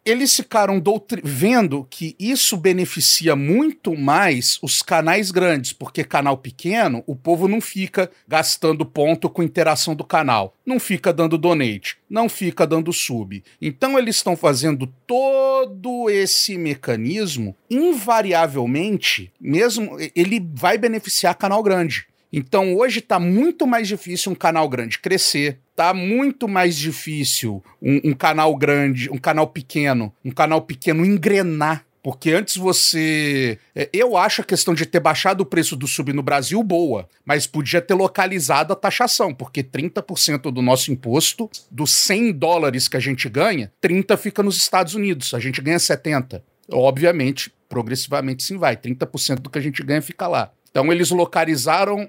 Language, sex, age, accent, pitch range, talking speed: Portuguese, male, 40-59, Brazilian, 145-195 Hz, 150 wpm